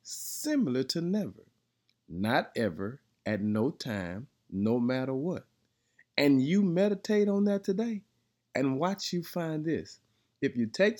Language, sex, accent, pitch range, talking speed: English, male, American, 115-165 Hz, 135 wpm